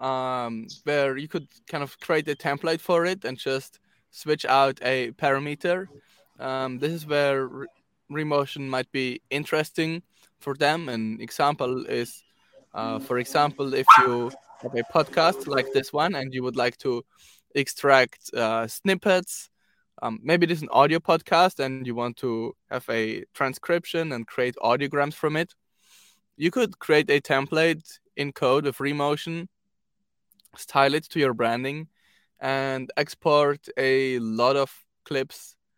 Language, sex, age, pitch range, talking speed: English, male, 20-39, 130-160 Hz, 150 wpm